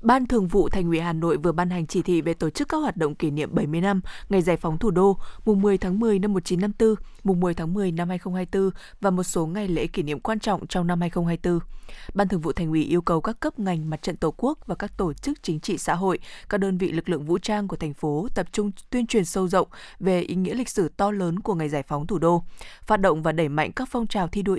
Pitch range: 170-210 Hz